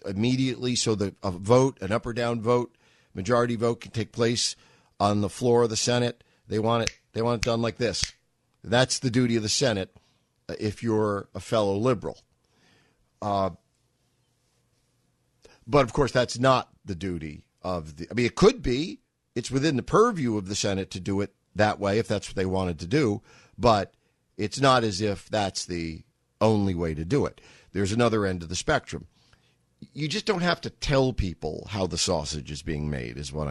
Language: English